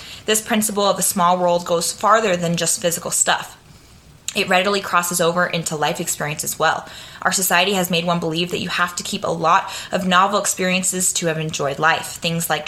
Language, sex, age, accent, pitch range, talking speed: English, female, 20-39, American, 165-190 Hz, 205 wpm